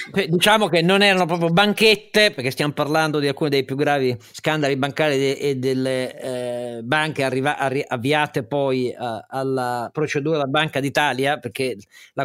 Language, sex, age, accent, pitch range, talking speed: Italian, male, 40-59, native, 125-160 Hz, 160 wpm